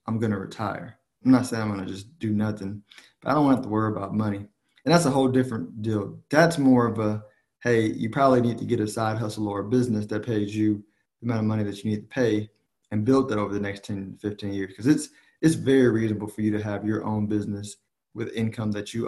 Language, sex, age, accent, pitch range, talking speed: English, male, 20-39, American, 105-115 Hz, 250 wpm